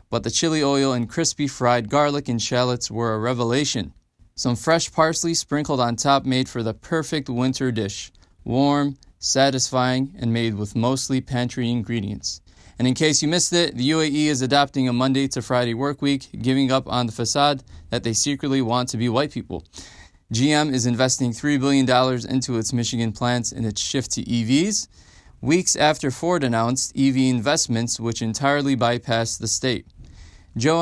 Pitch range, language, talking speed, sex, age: 115-140 Hz, English, 170 wpm, male, 20-39